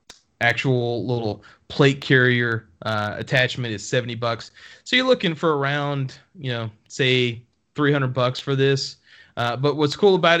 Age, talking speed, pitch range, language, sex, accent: 30-49, 150 wpm, 110-130 Hz, English, male, American